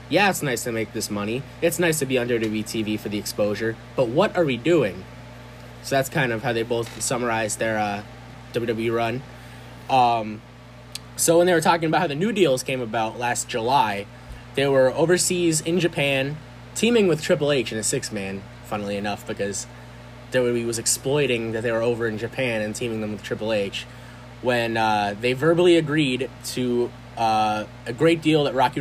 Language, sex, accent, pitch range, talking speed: English, male, American, 115-150 Hz, 190 wpm